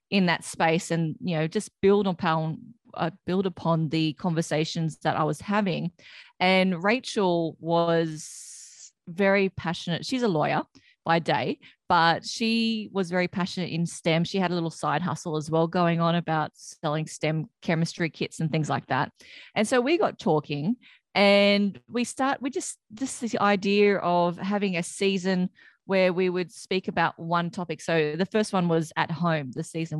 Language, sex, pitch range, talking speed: English, female, 165-220 Hz, 170 wpm